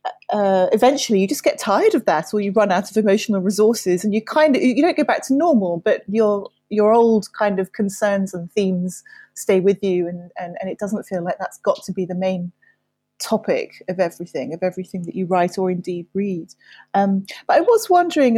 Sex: female